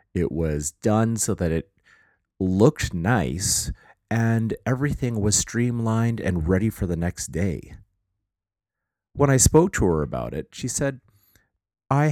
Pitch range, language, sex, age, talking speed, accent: 90-115 Hz, English, male, 40-59, 140 wpm, American